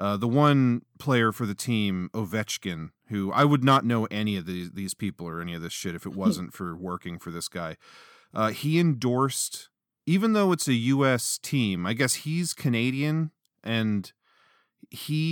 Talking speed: 180 wpm